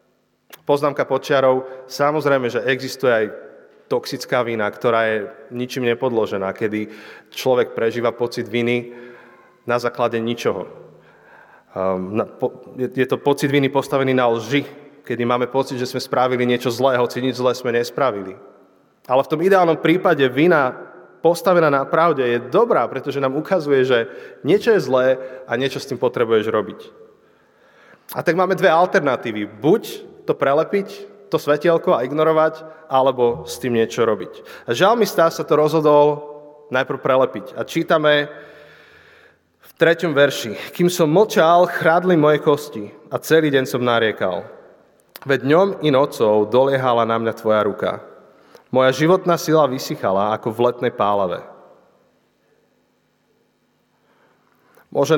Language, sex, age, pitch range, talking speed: Slovak, male, 30-49, 120-160 Hz, 140 wpm